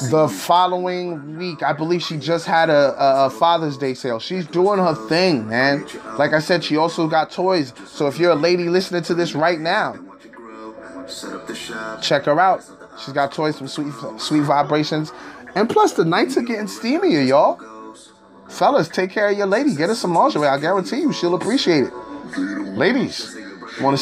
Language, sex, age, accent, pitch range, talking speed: English, male, 20-39, American, 140-185 Hz, 180 wpm